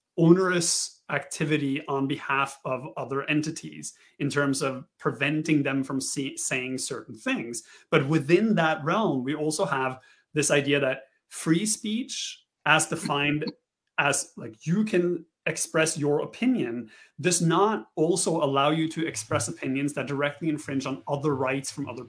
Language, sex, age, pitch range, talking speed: English, male, 30-49, 135-165 Hz, 145 wpm